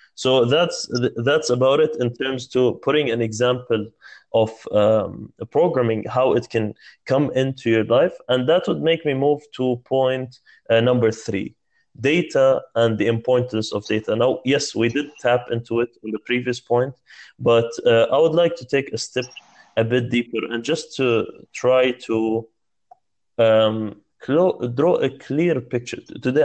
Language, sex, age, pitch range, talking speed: English, male, 20-39, 115-135 Hz, 165 wpm